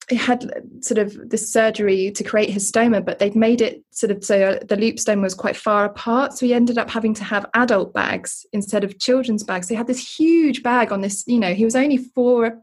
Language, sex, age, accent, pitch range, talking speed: English, female, 20-39, British, 200-240 Hz, 240 wpm